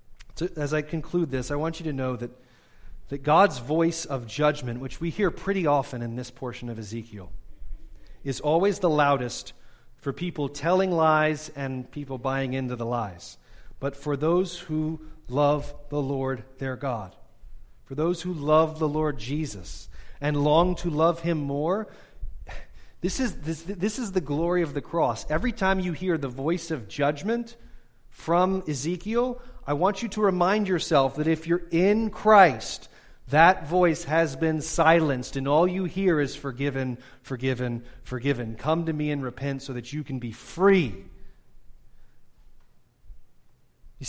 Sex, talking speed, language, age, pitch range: male, 160 wpm, English, 40-59, 130-175 Hz